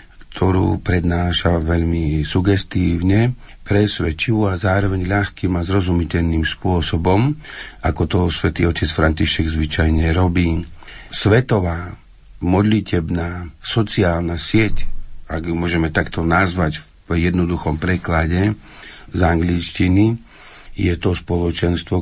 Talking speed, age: 95 wpm, 50-69